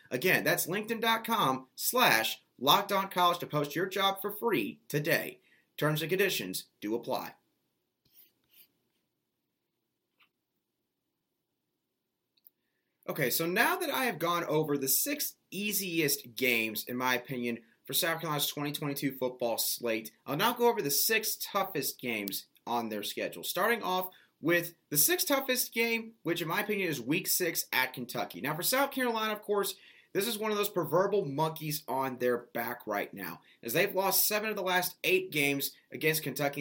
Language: English